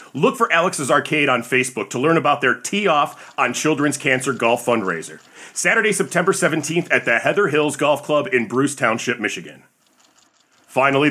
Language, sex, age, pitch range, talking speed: English, male, 40-59, 120-195 Hz, 165 wpm